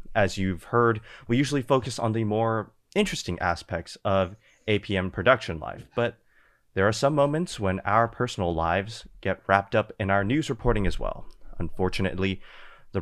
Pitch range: 95-120 Hz